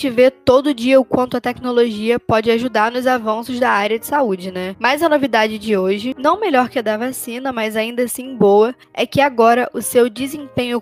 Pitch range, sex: 225-265 Hz, female